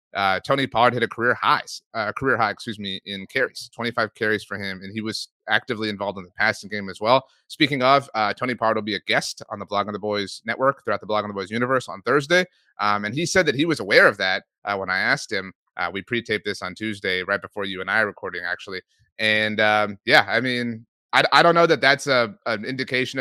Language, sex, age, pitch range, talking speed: English, male, 30-49, 105-135 Hz, 250 wpm